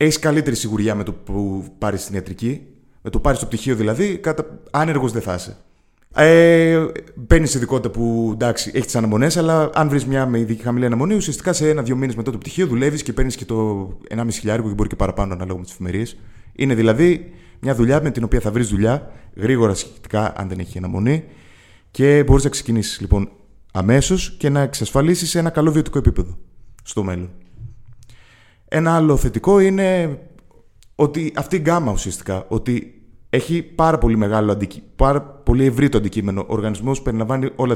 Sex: male